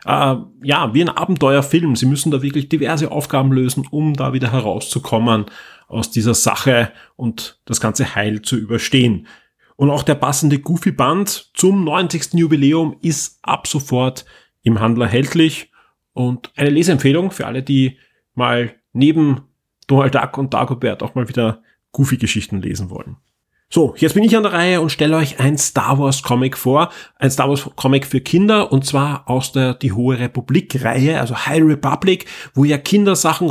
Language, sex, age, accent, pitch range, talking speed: German, male, 30-49, German, 130-155 Hz, 165 wpm